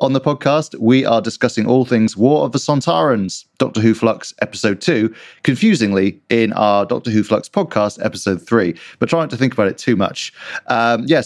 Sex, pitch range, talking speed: male, 110-140 Hz, 195 wpm